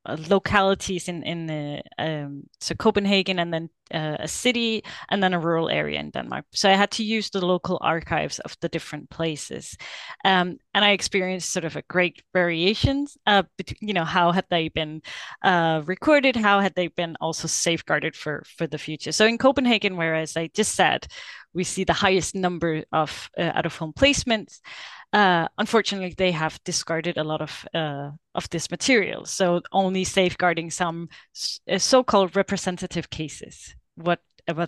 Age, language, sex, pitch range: 20-39, English, female, 165-205 Hz